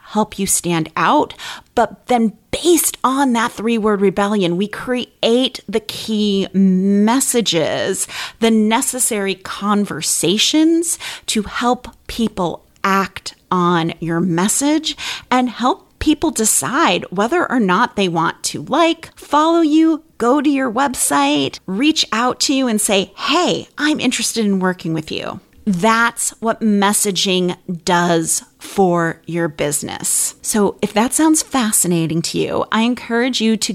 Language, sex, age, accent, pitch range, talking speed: English, female, 30-49, American, 180-255 Hz, 130 wpm